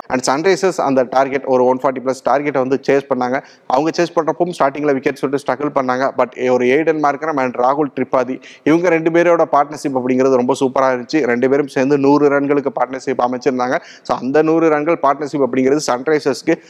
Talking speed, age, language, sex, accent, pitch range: 175 wpm, 30-49, Tamil, male, native, 130-150 Hz